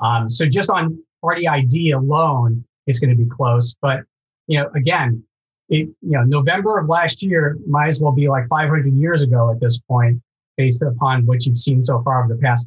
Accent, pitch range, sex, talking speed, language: American, 120-145 Hz, male, 210 wpm, English